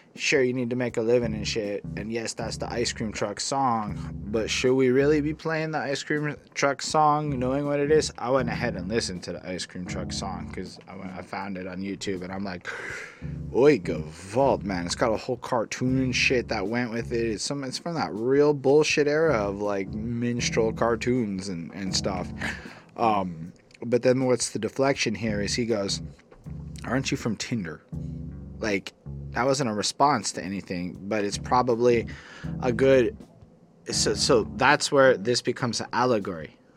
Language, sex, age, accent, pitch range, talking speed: English, male, 20-39, American, 100-130 Hz, 190 wpm